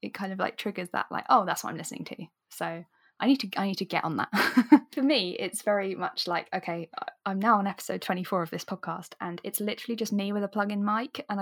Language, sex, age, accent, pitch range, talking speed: English, female, 10-29, British, 180-225 Hz, 250 wpm